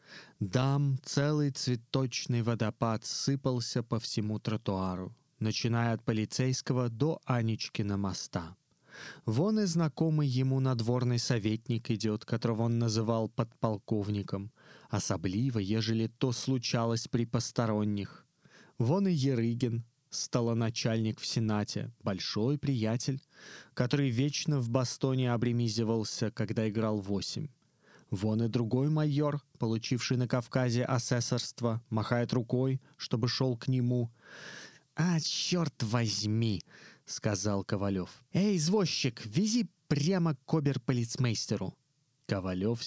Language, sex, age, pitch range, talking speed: Russian, male, 20-39, 110-140 Hz, 105 wpm